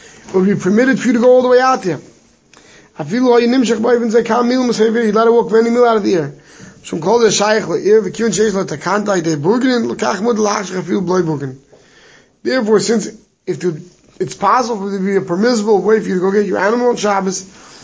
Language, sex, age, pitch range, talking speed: English, male, 30-49, 170-225 Hz, 240 wpm